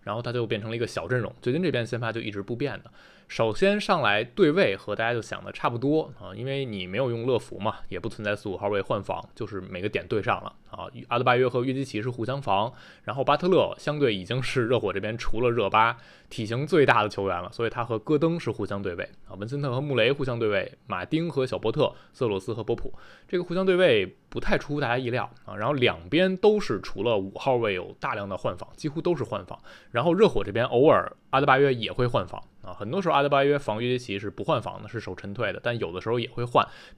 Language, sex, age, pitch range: Chinese, male, 20-39, 110-145 Hz